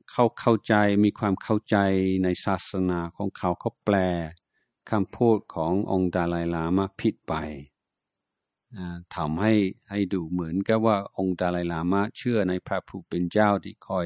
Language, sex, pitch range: Thai, male, 90-110 Hz